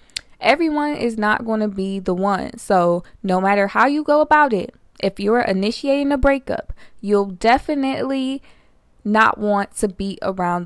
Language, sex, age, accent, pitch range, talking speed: English, female, 20-39, American, 185-225 Hz, 160 wpm